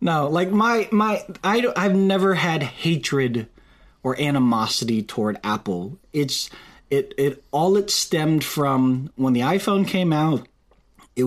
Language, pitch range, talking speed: English, 110-140 Hz, 140 wpm